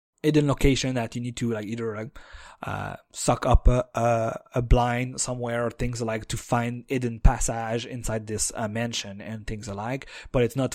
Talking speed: 185 wpm